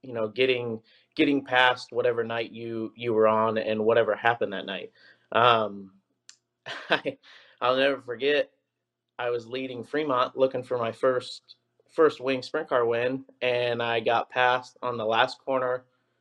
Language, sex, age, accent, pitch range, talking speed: English, male, 30-49, American, 115-140 Hz, 155 wpm